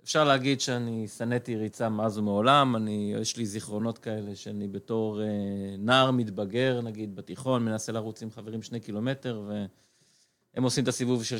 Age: 30-49